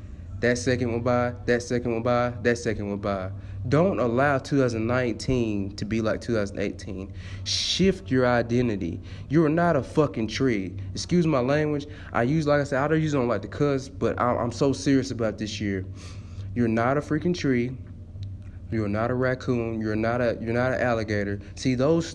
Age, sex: 20-39, male